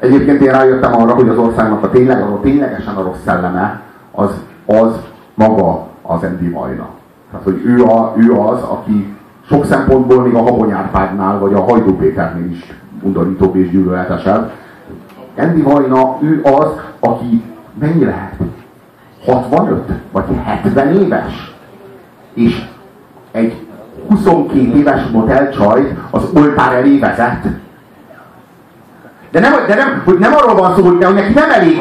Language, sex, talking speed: Hungarian, male, 140 wpm